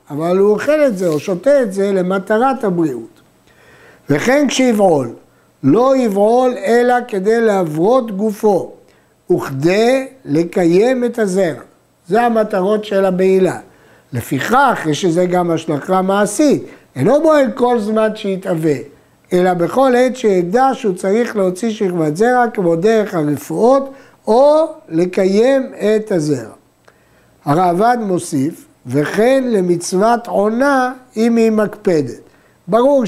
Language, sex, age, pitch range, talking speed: Hebrew, male, 60-79, 180-240 Hz, 110 wpm